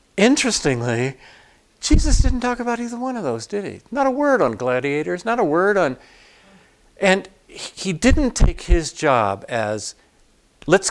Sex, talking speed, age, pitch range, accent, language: male, 155 wpm, 50-69, 120-185 Hz, American, English